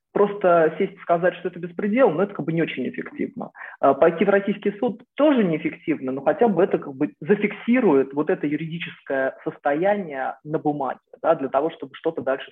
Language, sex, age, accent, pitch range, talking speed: Russian, male, 30-49, native, 140-195 Hz, 180 wpm